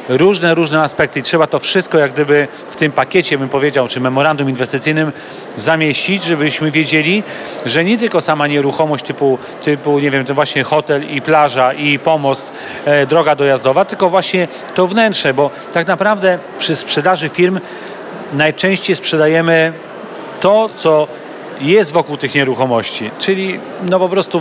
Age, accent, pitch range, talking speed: 40-59, native, 140-165 Hz, 150 wpm